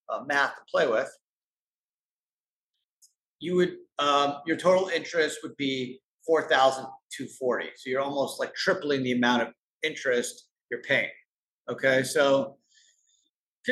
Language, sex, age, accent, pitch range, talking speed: English, male, 50-69, American, 130-215 Hz, 135 wpm